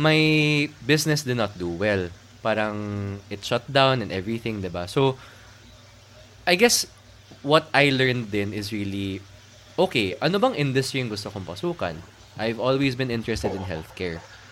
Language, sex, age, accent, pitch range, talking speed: Filipino, male, 20-39, native, 95-125 Hz, 155 wpm